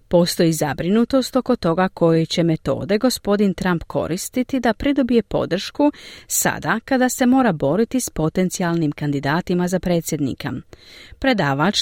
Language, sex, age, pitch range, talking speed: Croatian, female, 40-59, 150-225 Hz, 120 wpm